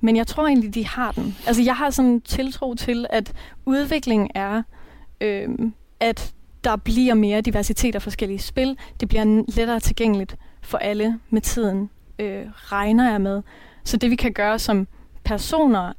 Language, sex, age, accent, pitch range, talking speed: Danish, female, 30-49, native, 200-235 Hz, 165 wpm